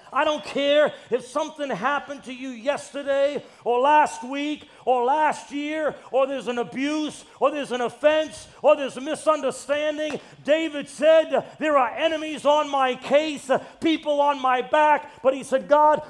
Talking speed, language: 160 wpm, English